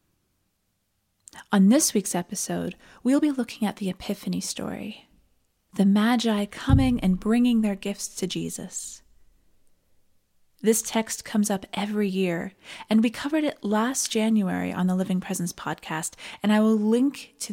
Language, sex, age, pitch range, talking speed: English, female, 30-49, 180-225 Hz, 145 wpm